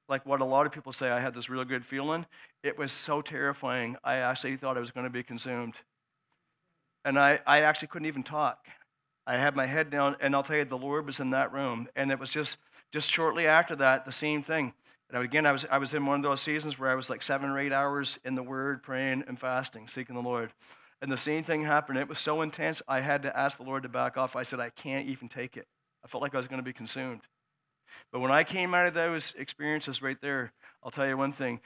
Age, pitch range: 50-69, 130-150 Hz